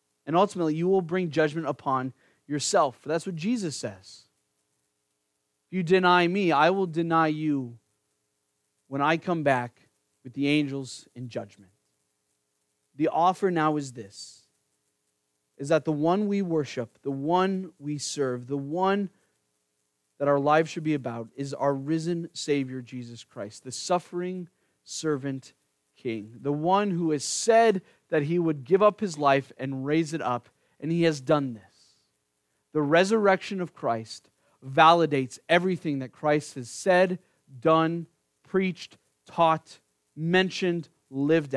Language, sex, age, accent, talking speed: English, male, 30-49, American, 140 wpm